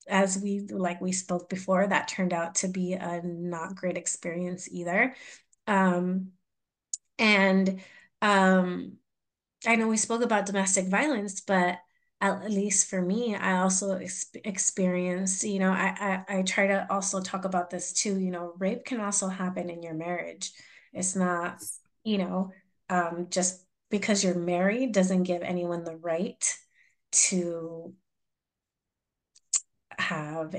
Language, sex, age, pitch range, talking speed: English, female, 30-49, 175-195 Hz, 140 wpm